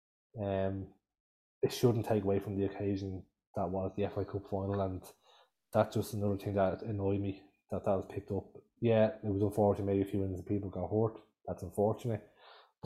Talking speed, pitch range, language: 190 wpm, 95-105 Hz, English